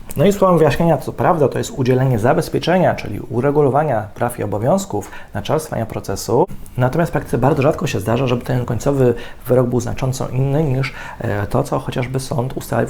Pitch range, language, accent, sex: 110-145 Hz, Polish, native, male